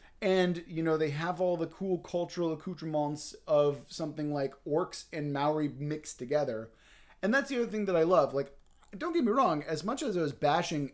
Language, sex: English, male